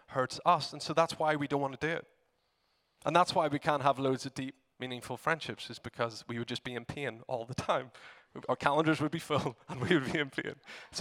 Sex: male